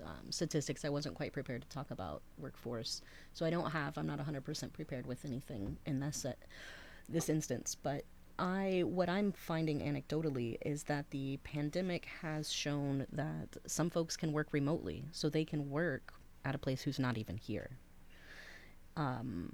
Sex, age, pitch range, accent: female, 30-49, 115-150 Hz, American